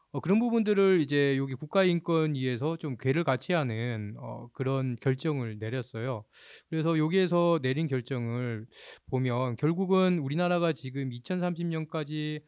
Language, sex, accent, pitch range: Korean, male, native, 125-180 Hz